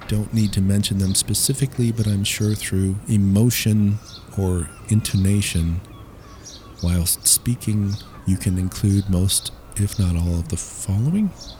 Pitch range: 95-120 Hz